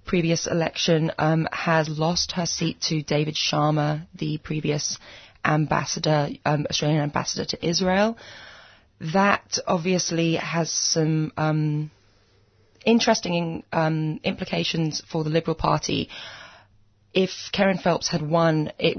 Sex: female